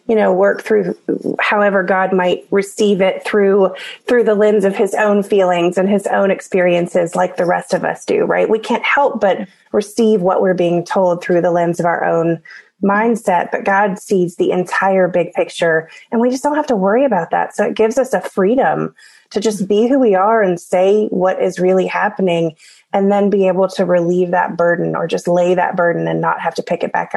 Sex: female